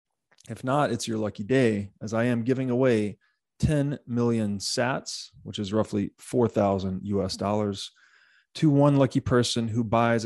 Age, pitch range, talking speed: 30-49, 105-125 Hz, 150 wpm